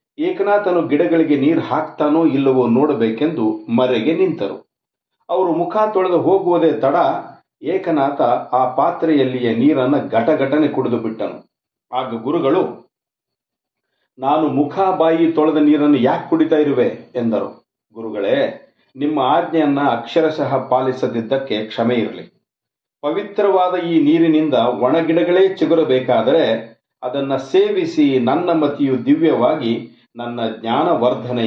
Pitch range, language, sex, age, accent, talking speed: 115-160 Hz, Kannada, male, 50-69, native, 90 wpm